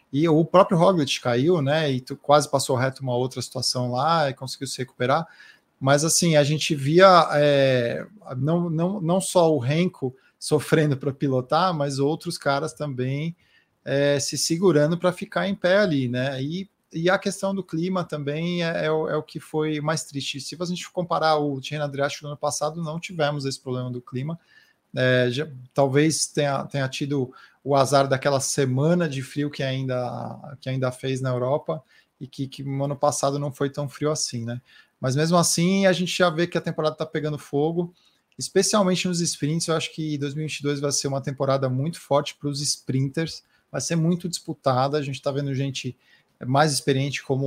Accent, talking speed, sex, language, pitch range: Brazilian, 190 wpm, male, Portuguese, 135-165 Hz